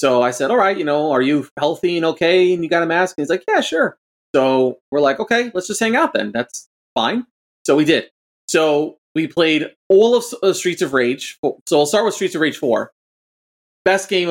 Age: 30-49